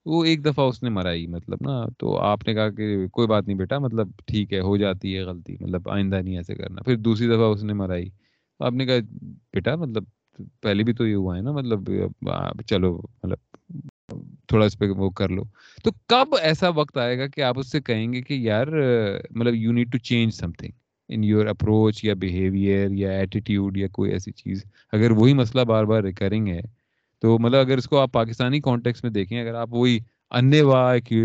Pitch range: 105-130 Hz